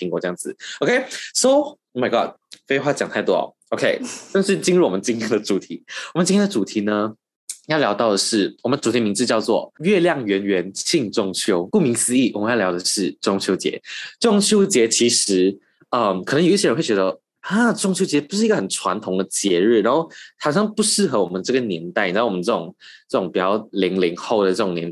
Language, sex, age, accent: Chinese, male, 20-39, native